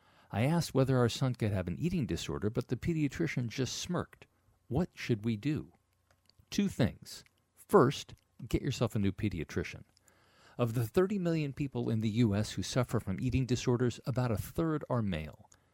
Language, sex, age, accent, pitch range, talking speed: English, male, 50-69, American, 105-135 Hz, 170 wpm